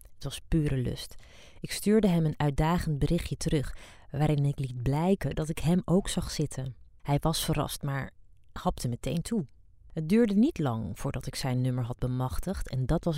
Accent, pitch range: Dutch, 130-170 Hz